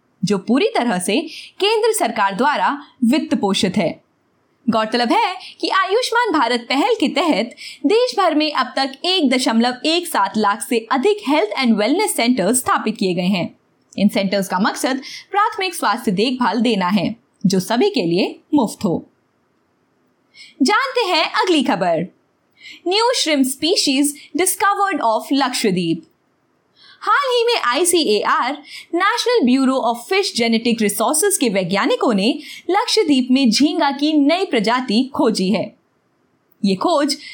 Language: Hindi